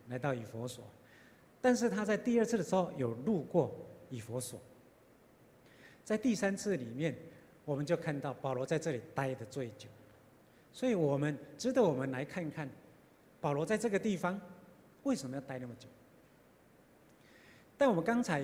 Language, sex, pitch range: Chinese, male, 130-180 Hz